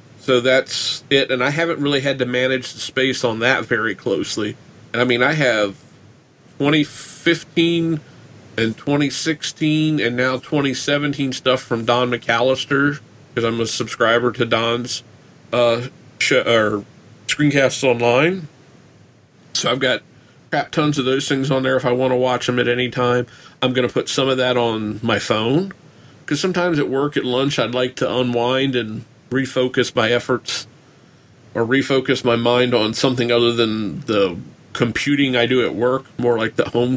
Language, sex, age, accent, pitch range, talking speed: English, male, 40-59, American, 120-140 Hz, 165 wpm